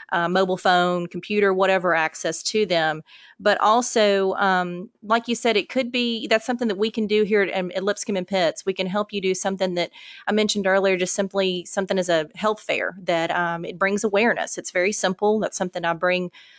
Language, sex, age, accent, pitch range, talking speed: English, female, 30-49, American, 180-205 Hz, 210 wpm